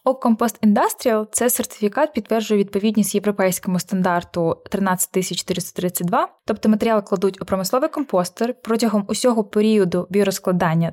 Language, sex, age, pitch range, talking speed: Ukrainian, female, 20-39, 190-235 Hz, 115 wpm